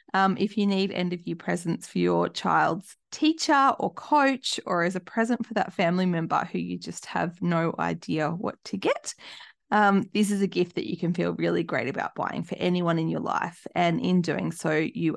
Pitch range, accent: 170-215 Hz, Australian